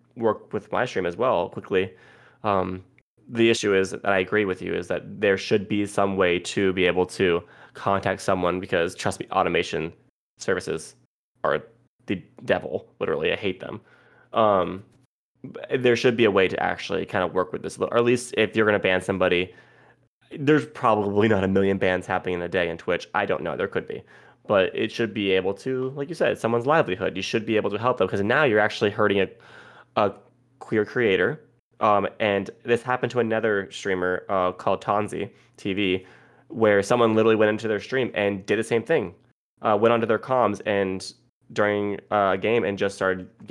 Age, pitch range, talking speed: 20-39, 95-115 Hz, 195 wpm